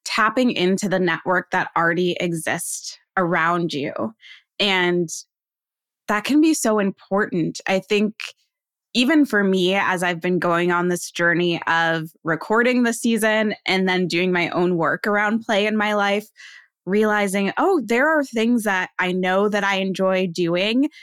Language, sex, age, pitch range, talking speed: English, female, 20-39, 175-225 Hz, 155 wpm